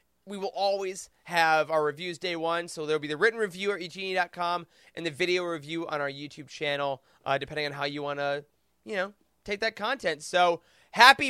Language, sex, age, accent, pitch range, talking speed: English, male, 20-39, American, 170-230 Hz, 200 wpm